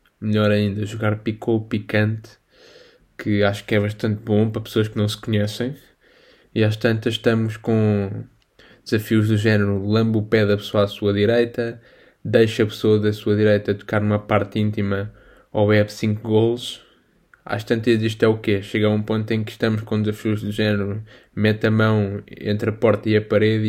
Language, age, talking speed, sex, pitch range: Portuguese, 10-29, 185 wpm, male, 105-110 Hz